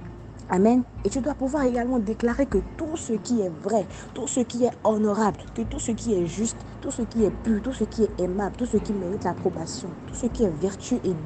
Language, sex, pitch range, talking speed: French, female, 175-235 Hz, 240 wpm